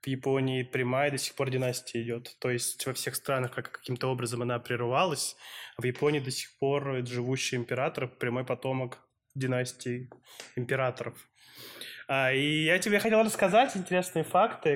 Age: 20-39